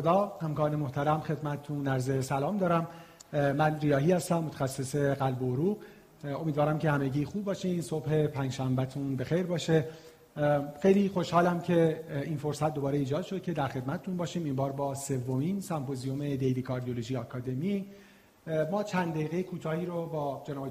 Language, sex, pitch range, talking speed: Persian, male, 135-175 Hz, 150 wpm